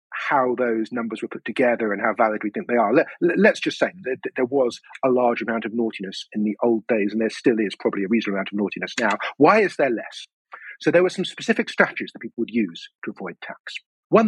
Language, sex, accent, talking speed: English, male, British, 245 wpm